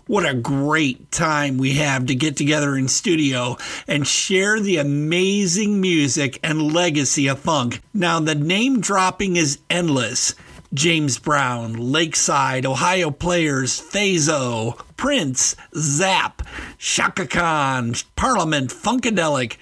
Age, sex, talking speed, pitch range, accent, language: 50-69, male, 115 wpm, 140-180 Hz, American, English